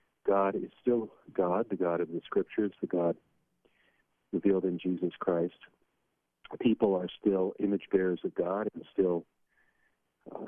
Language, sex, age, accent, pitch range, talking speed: English, male, 50-69, American, 85-105 Hz, 145 wpm